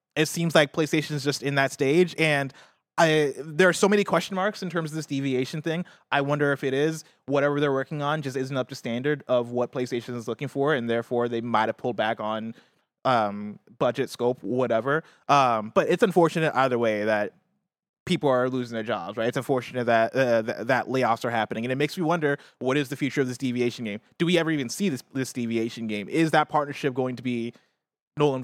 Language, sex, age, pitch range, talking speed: English, male, 20-39, 120-155 Hz, 225 wpm